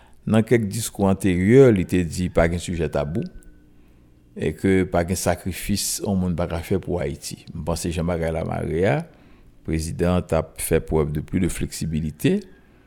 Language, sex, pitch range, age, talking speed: French, male, 80-100 Hz, 60-79, 160 wpm